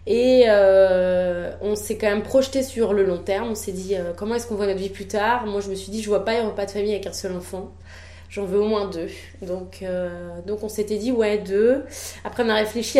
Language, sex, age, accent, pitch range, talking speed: French, female, 20-39, French, 185-225 Hz, 260 wpm